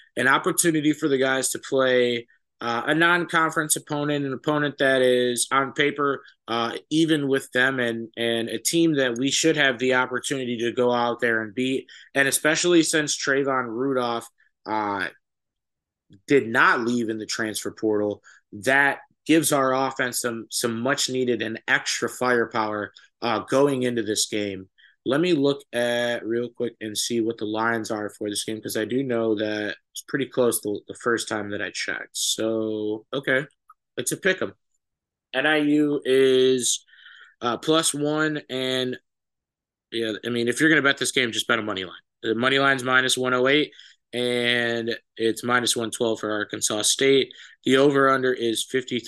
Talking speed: 170 wpm